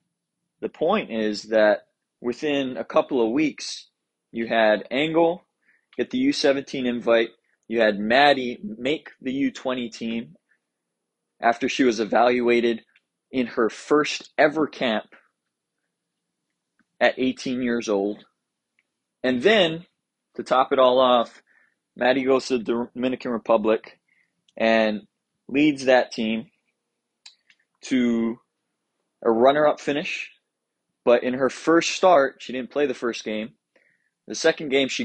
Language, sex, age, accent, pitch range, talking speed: English, male, 20-39, American, 115-135 Hz, 125 wpm